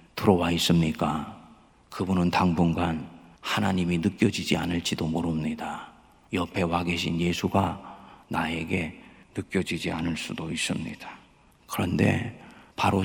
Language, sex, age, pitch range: Korean, male, 40-59, 85-130 Hz